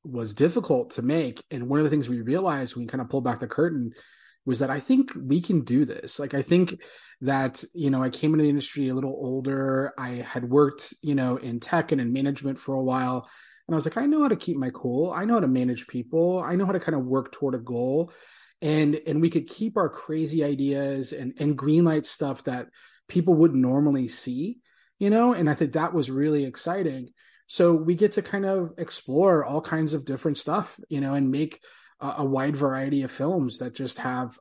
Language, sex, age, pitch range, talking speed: English, male, 30-49, 125-160 Hz, 230 wpm